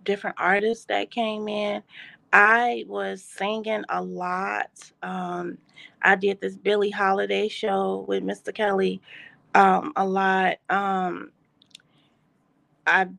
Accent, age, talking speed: American, 30-49, 115 wpm